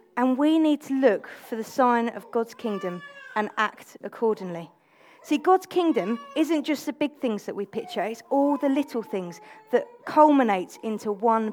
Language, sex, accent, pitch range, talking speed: English, female, British, 195-250 Hz, 175 wpm